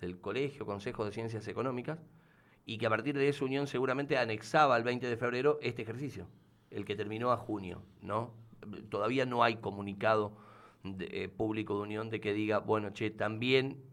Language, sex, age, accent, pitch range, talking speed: Spanish, male, 40-59, Argentinian, 105-140 Hz, 175 wpm